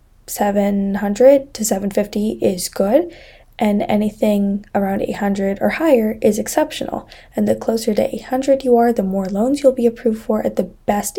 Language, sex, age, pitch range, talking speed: English, female, 20-39, 210-260 Hz, 160 wpm